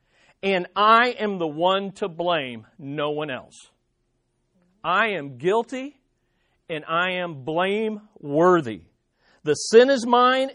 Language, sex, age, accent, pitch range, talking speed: English, male, 50-69, American, 165-235 Hz, 125 wpm